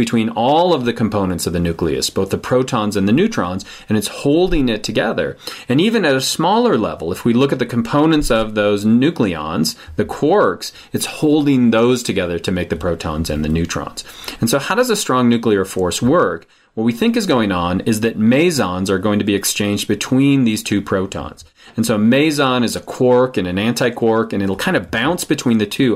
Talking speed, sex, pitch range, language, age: 215 wpm, male, 100-125 Hz, English, 30-49